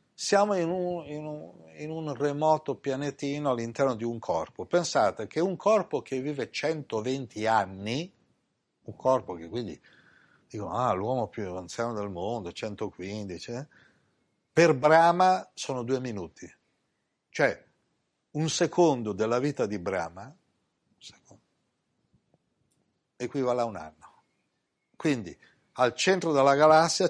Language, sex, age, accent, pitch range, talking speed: Italian, male, 60-79, native, 115-165 Hz, 125 wpm